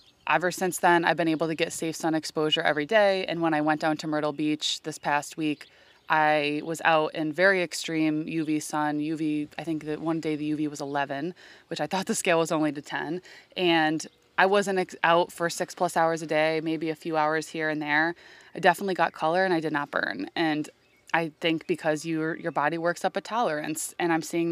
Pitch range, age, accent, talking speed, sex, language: 155-180 Hz, 20-39, American, 220 wpm, female, English